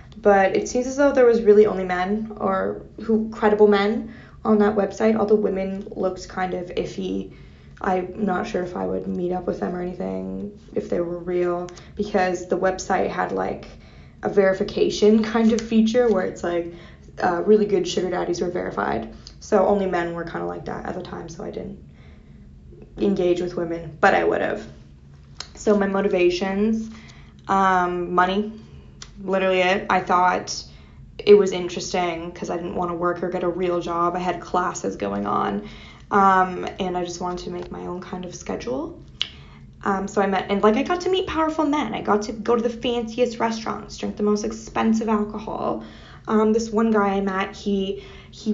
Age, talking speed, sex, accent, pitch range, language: 10-29, 190 wpm, female, American, 175-215 Hz, English